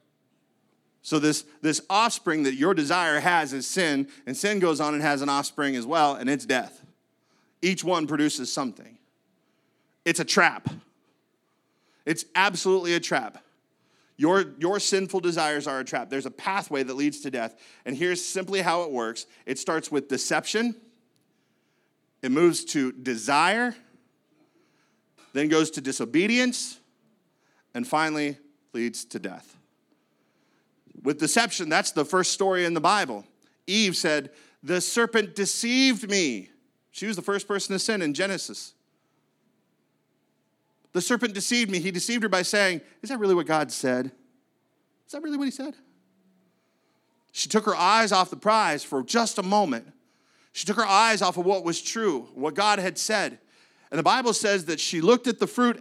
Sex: male